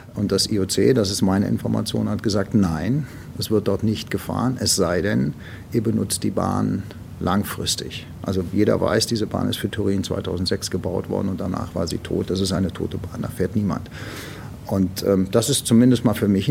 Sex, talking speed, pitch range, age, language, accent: male, 200 wpm, 95-115 Hz, 50-69, German, German